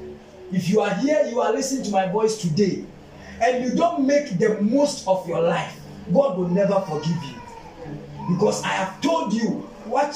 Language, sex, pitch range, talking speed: English, male, 180-230 Hz, 185 wpm